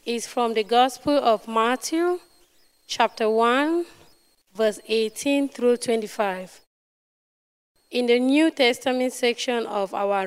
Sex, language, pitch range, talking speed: female, English, 205-260 Hz, 110 wpm